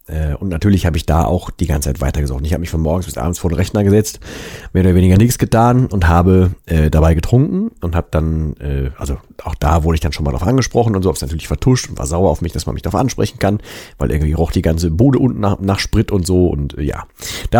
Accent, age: German, 40-59